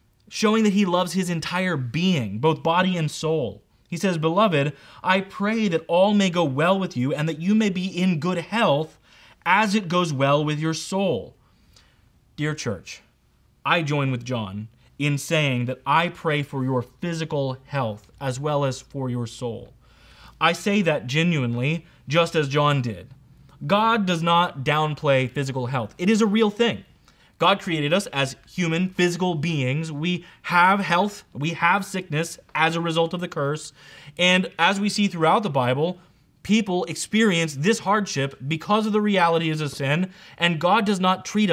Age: 20-39